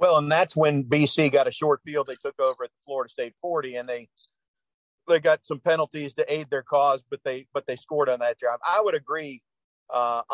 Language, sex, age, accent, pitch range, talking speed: English, male, 50-69, American, 135-165 Hz, 225 wpm